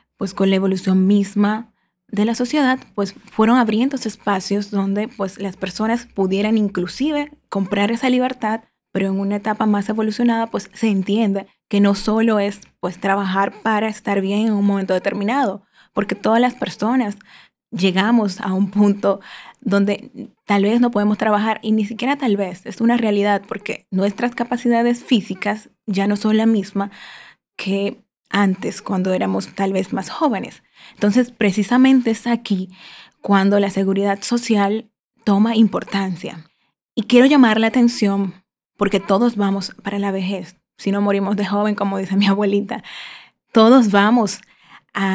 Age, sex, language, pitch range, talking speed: 10-29, female, Spanish, 200-230 Hz, 155 wpm